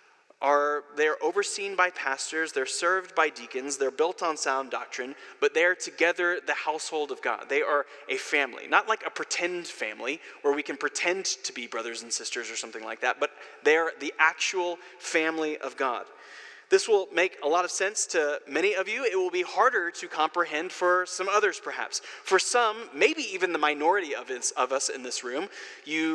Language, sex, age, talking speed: English, male, 20-39, 190 wpm